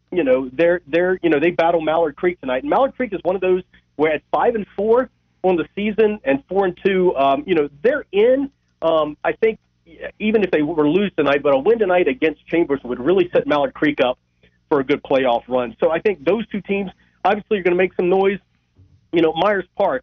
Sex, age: male, 40-59